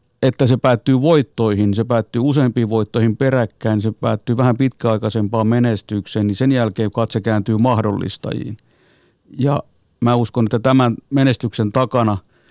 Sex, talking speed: male, 130 wpm